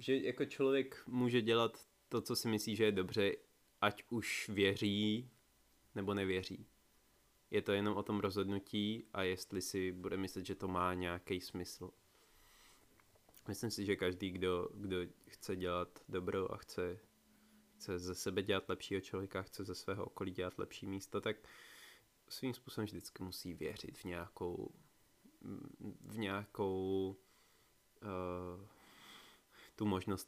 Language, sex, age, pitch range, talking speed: Czech, male, 20-39, 90-105 Hz, 140 wpm